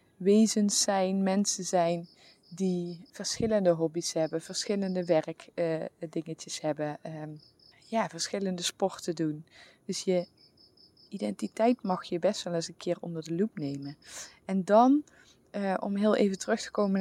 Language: English